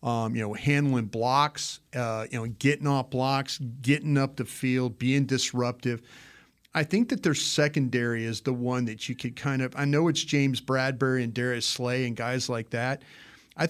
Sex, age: male, 40-59